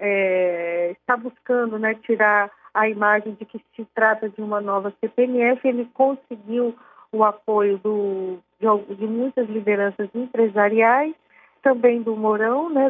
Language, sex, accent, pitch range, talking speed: Portuguese, female, Brazilian, 215-270 Hz, 135 wpm